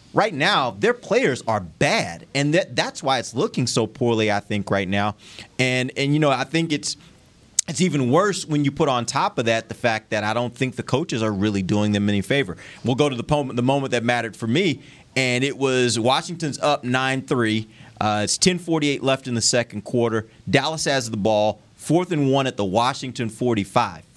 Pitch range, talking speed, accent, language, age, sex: 110-140 Hz, 210 wpm, American, English, 30-49, male